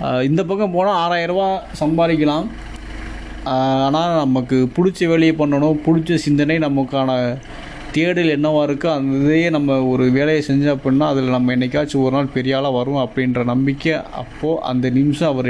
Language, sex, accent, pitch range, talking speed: Tamil, male, native, 130-150 Hz, 140 wpm